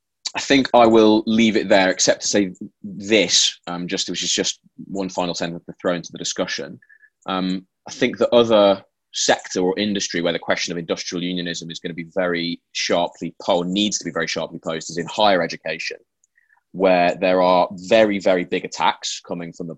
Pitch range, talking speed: 85-105 Hz, 195 wpm